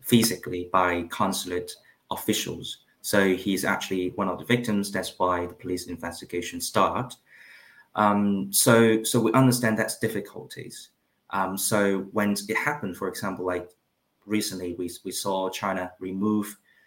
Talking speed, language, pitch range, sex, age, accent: 135 wpm, English, 90-105 Hz, male, 30-49, British